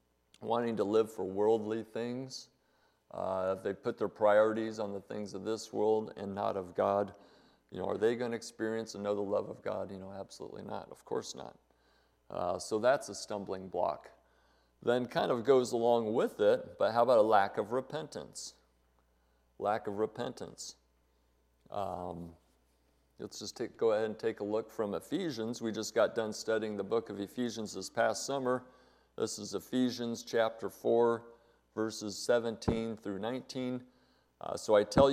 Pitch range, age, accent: 100-120 Hz, 50-69, American